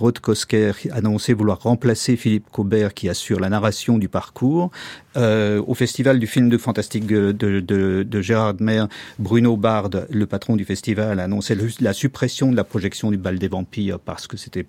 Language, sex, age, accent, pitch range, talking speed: French, male, 50-69, French, 105-125 Hz, 190 wpm